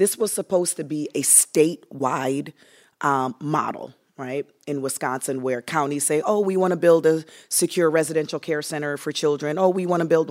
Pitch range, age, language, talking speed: 150-190 Hz, 30-49, English, 185 wpm